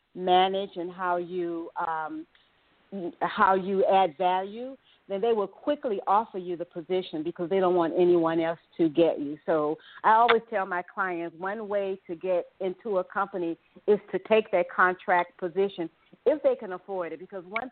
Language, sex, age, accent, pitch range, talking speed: English, female, 40-59, American, 170-200 Hz, 175 wpm